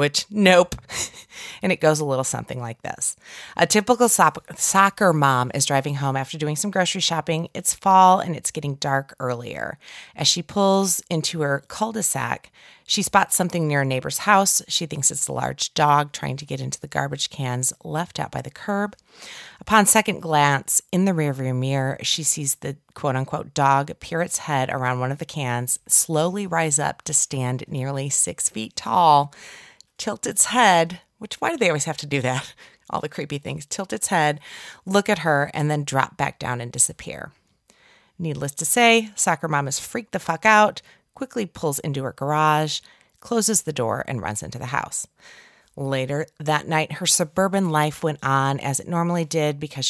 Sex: female